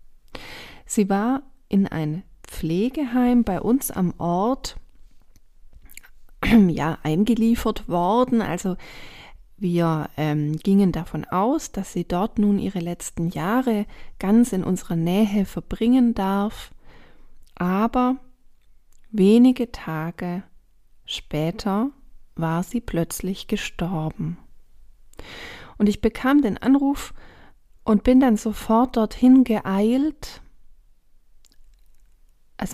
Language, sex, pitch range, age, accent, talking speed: German, female, 180-235 Hz, 40-59, German, 90 wpm